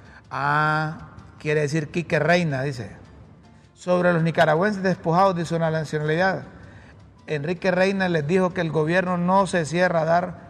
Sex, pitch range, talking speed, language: male, 155-190 Hz, 145 wpm, Spanish